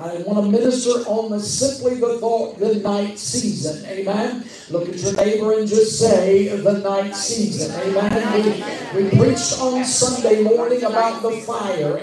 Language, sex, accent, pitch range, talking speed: English, male, American, 200-235 Hz, 165 wpm